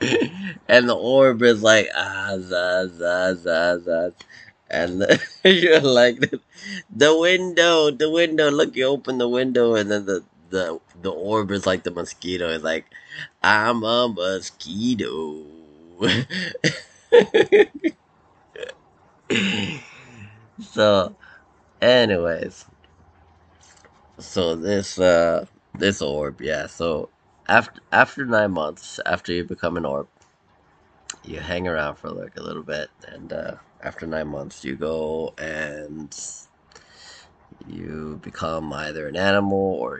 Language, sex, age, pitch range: English, male, 20-39, 85-120 Hz